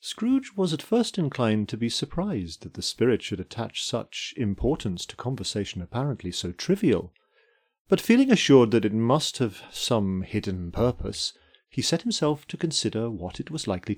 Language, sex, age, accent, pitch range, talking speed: English, male, 40-59, British, 100-160 Hz, 170 wpm